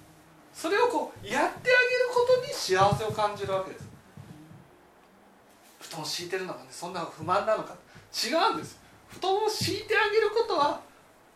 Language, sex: Japanese, male